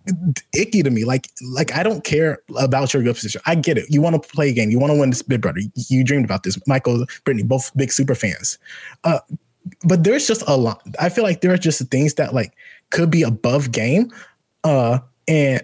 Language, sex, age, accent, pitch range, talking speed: English, male, 20-39, American, 130-175 Hz, 230 wpm